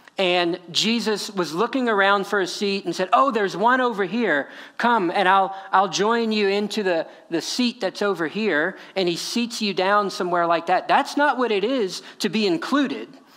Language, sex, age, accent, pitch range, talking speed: English, male, 40-59, American, 180-250 Hz, 200 wpm